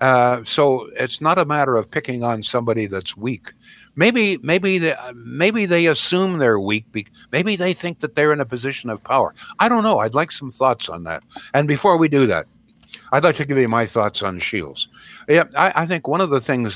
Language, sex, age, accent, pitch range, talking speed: English, male, 60-79, American, 115-155 Hz, 220 wpm